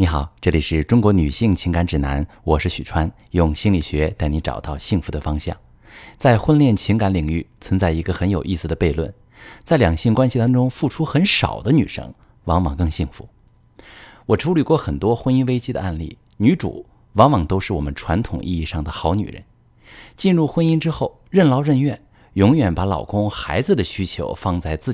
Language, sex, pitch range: Chinese, male, 85-120 Hz